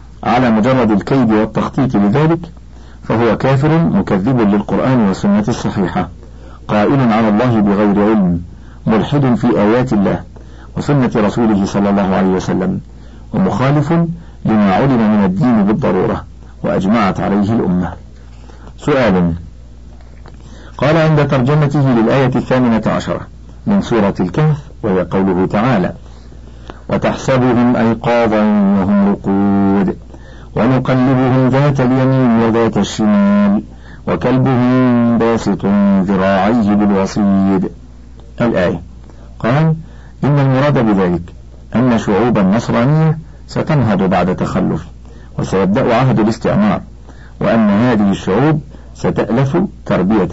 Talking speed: 95 wpm